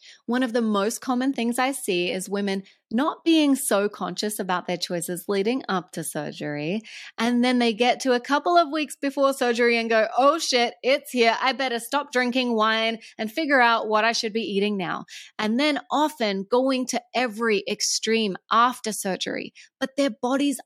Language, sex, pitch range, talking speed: English, female, 195-255 Hz, 185 wpm